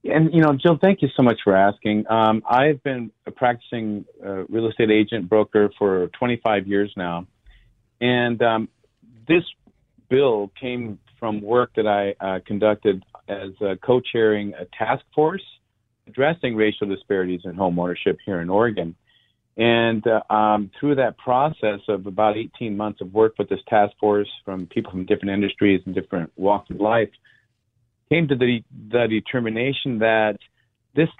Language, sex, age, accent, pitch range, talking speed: English, male, 40-59, American, 105-125 Hz, 160 wpm